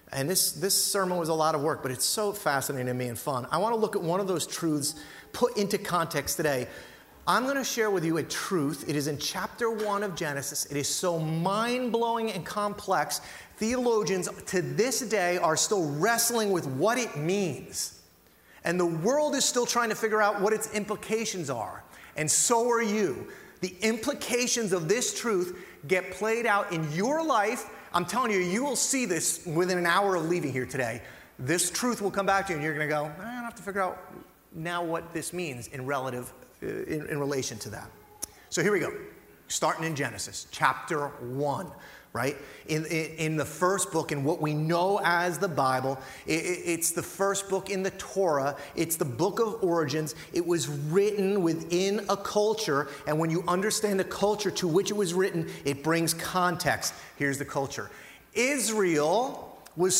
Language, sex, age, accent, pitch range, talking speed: English, male, 30-49, American, 150-205 Hz, 195 wpm